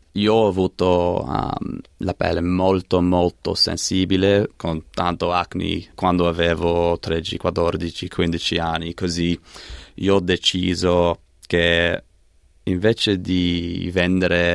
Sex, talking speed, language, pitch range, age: male, 105 wpm, Italian, 85-95 Hz, 20-39